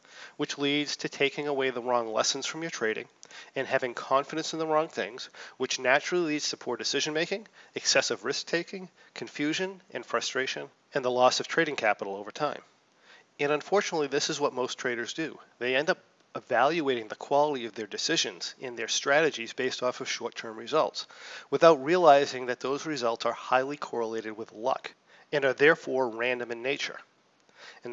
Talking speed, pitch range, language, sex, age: 170 wpm, 125-155 Hz, English, male, 40-59